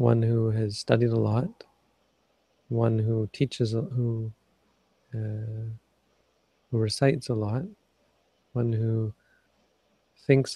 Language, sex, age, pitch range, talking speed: English, male, 40-59, 110-125 Hz, 95 wpm